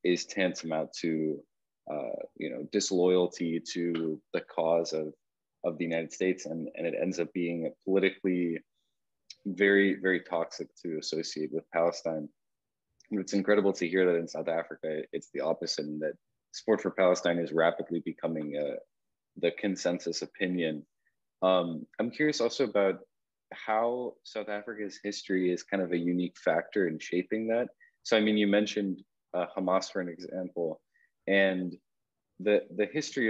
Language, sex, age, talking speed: English, male, 20-39, 155 wpm